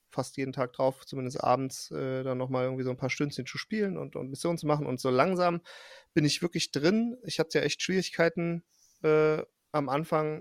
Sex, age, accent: male, 40-59, German